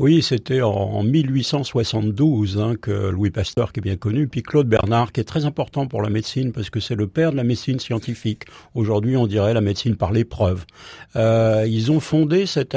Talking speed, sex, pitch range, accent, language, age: 205 wpm, male, 105-130 Hz, French, French, 50-69